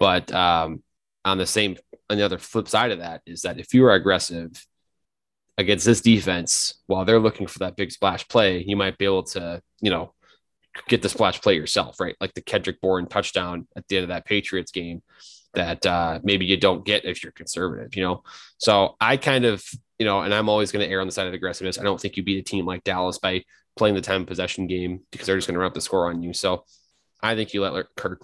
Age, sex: 20-39, male